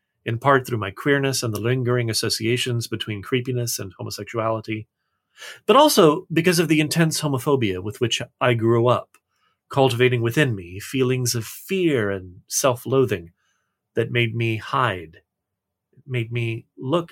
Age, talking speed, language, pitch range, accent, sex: 40-59, 140 wpm, English, 110-150 Hz, American, male